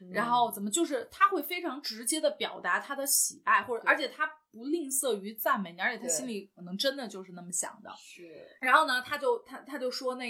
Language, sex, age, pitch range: Chinese, female, 30-49, 190-275 Hz